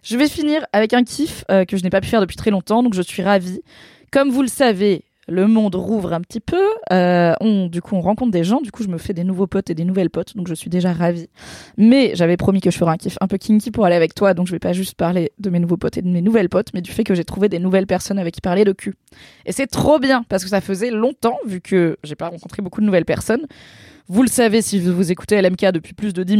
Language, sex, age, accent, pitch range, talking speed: French, female, 20-39, French, 175-225 Hz, 295 wpm